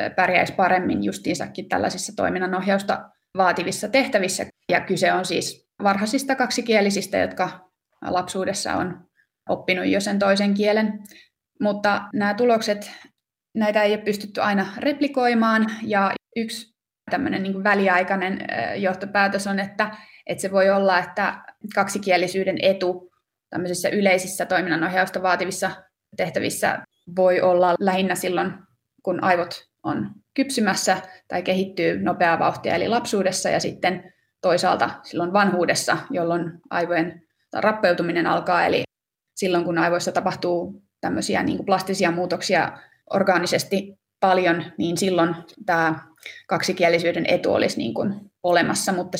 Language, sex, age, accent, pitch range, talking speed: Finnish, female, 20-39, native, 180-205 Hz, 115 wpm